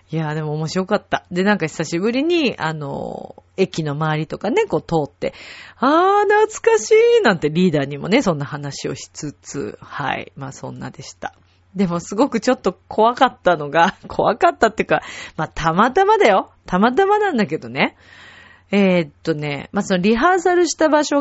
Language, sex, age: Japanese, female, 40-59